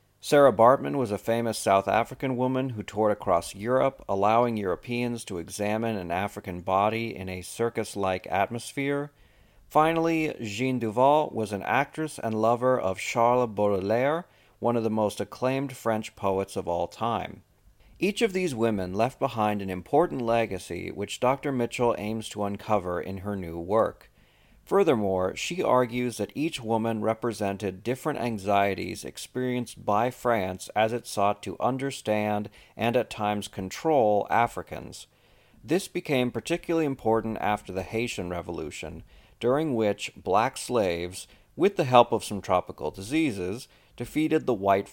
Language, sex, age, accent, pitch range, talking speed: English, male, 40-59, American, 100-125 Hz, 145 wpm